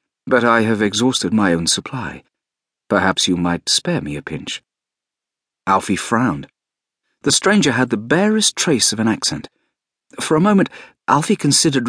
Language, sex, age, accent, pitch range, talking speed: English, male, 40-59, British, 90-130 Hz, 150 wpm